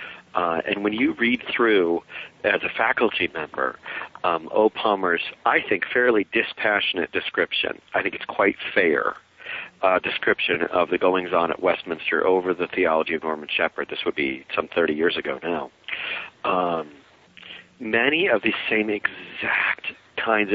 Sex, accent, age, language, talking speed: male, American, 50-69, English, 160 wpm